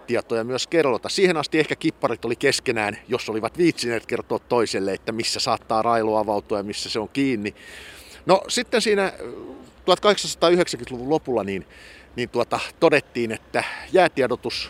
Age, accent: 50-69, native